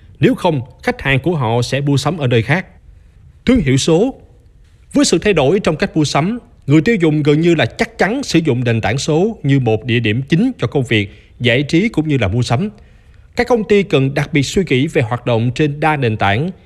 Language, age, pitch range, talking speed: Vietnamese, 20-39, 120-175 Hz, 240 wpm